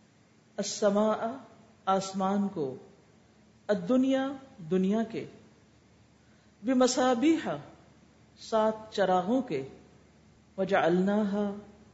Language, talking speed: Urdu, 55 wpm